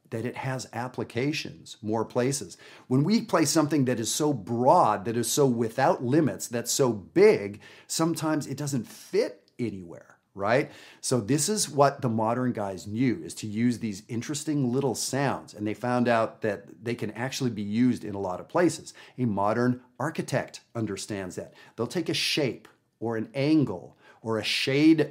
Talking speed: 170 wpm